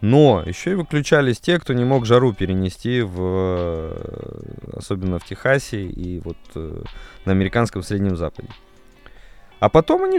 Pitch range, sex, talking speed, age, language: 95-135 Hz, male, 130 wpm, 20-39, Russian